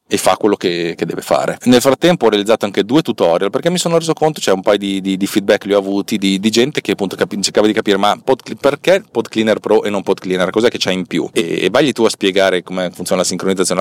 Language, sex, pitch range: Italian, male, 95-115 Hz